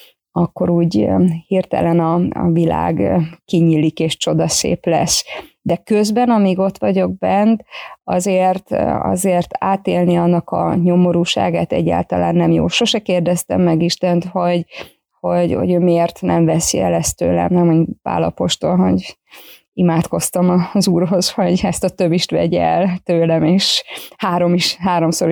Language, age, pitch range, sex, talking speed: Hungarian, 20-39, 170-195 Hz, female, 130 wpm